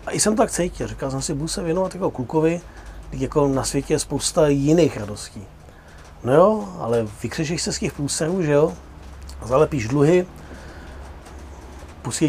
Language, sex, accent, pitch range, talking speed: Czech, male, native, 115-155 Hz, 160 wpm